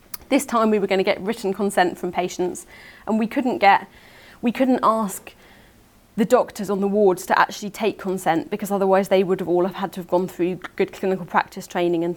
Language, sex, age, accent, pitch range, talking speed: English, female, 30-49, British, 175-200 Hz, 210 wpm